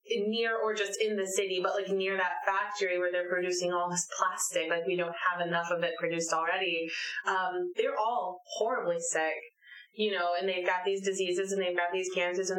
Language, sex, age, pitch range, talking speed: English, female, 20-39, 180-225 Hz, 210 wpm